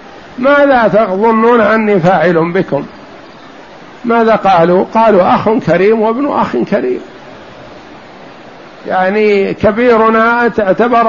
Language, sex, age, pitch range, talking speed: Arabic, male, 60-79, 190-230 Hz, 85 wpm